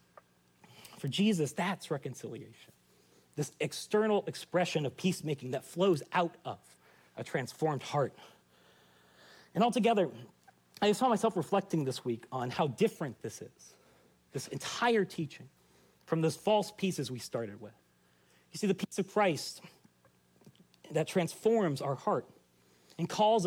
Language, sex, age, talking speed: English, male, 40-59, 130 wpm